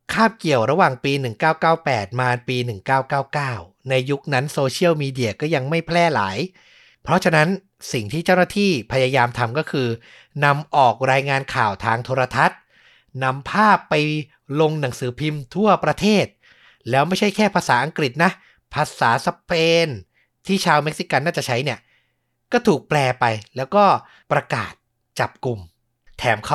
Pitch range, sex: 125-165 Hz, male